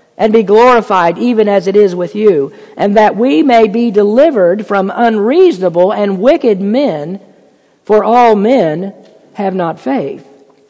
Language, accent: English, American